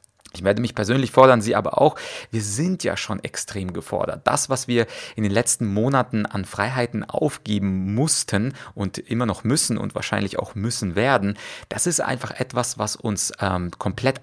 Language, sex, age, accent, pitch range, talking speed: German, male, 30-49, German, 100-120 Hz, 175 wpm